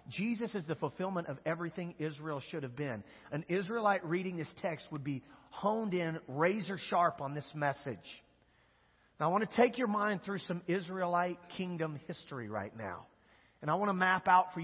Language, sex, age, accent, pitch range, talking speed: English, male, 40-59, American, 145-195 Hz, 185 wpm